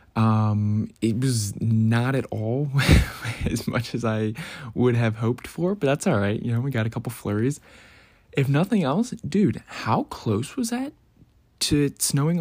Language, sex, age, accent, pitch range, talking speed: English, male, 20-39, American, 105-125 Hz, 170 wpm